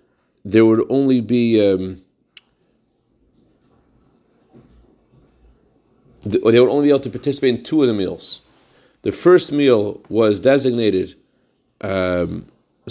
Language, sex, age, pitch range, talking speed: English, male, 40-59, 100-135 Hz, 105 wpm